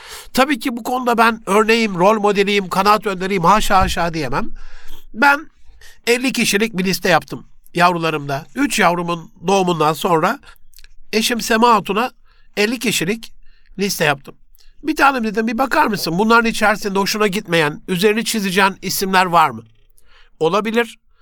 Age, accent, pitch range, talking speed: 60-79, native, 180-235 Hz, 135 wpm